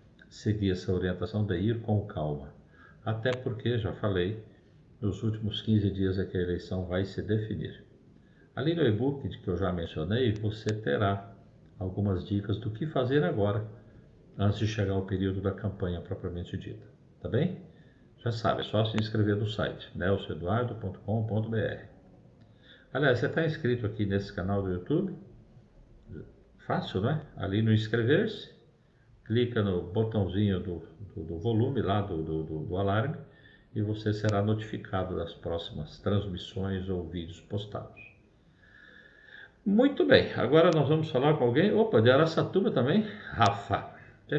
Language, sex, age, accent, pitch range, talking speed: Portuguese, male, 50-69, Brazilian, 95-120 Hz, 145 wpm